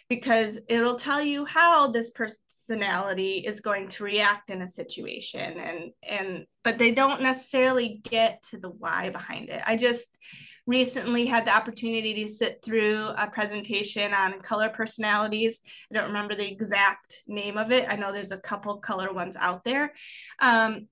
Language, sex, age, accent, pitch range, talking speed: English, female, 20-39, American, 205-250 Hz, 165 wpm